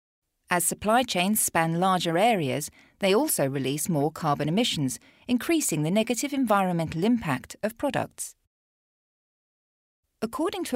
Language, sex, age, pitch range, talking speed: English, female, 40-59, 145-220 Hz, 115 wpm